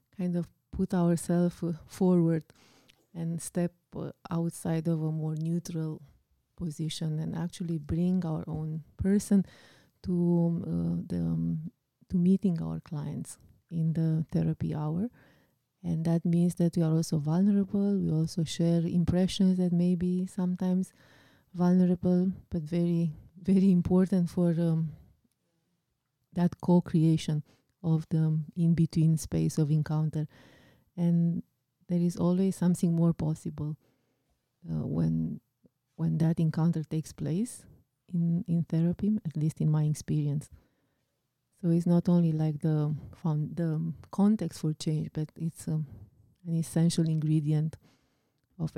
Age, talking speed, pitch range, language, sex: 30-49, 130 wpm, 155-175 Hz, English, female